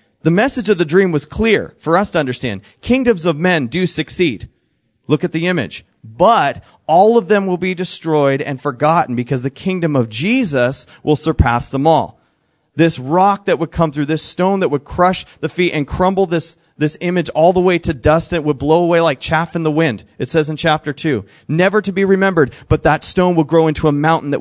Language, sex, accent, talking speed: English, male, American, 220 wpm